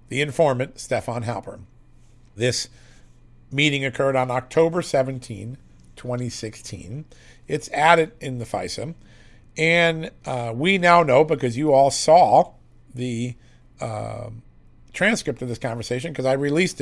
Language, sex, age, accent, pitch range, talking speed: English, male, 50-69, American, 120-155 Hz, 120 wpm